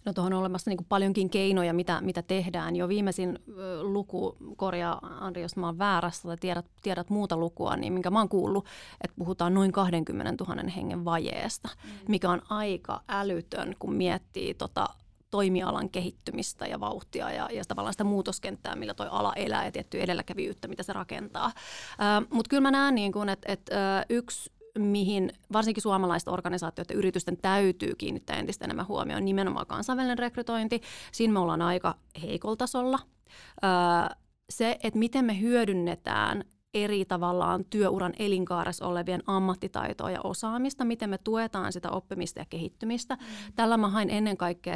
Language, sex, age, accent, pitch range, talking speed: Finnish, female, 30-49, native, 175-210 Hz, 155 wpm